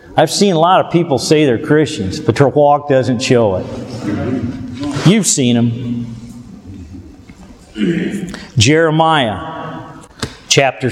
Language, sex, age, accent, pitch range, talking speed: English, male, 50-69, American, 120-165 Hz, 110 wpm